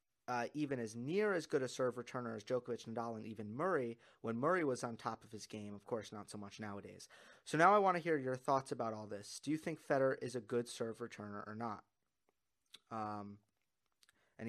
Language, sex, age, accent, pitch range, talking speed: English, male, 30-49, American, 115-155 Hz, 220 wpm